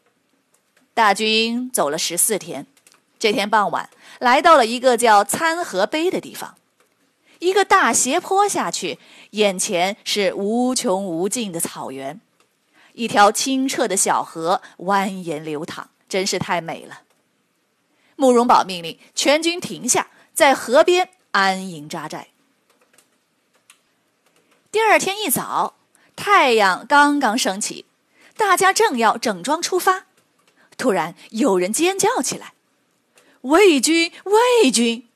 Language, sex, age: Chinese, female, 30-49